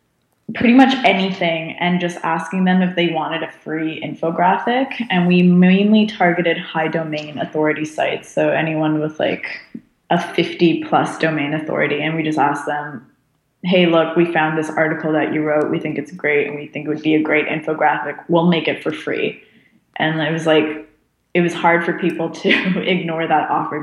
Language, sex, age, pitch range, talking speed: English, female, 20-39, 150-170 Hz, 190 wpm